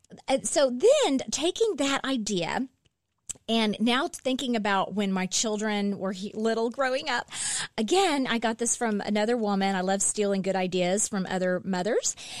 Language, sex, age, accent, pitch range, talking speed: English, female, 30-49, American, 190-245 Hz, 150 wpm